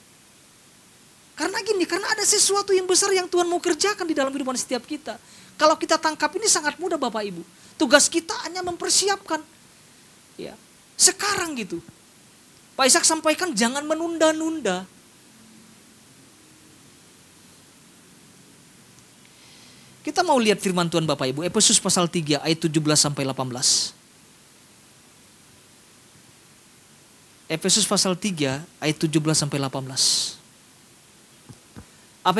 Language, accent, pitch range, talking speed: Indonesian, native, 195-315 Hz, 100 wpm